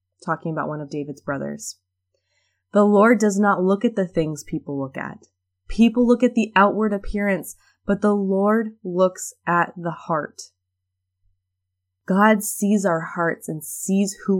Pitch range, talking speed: 150-195 Hz, 155 wpm